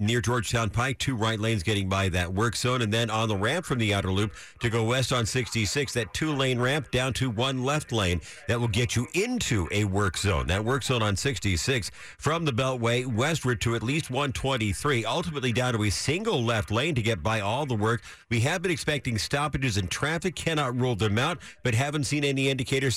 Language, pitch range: English, 100-130 Hz